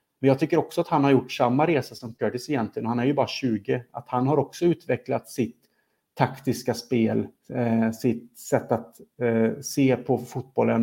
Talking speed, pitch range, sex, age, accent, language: 195 wpm, 120-145 Hz, male, 30-49, Norwegian, Swedish